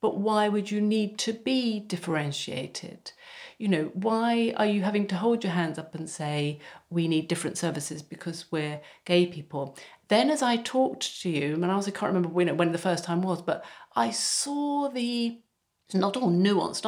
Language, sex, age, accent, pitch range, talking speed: English, female, 40-59, British, 170-230 Hz, 190 wpm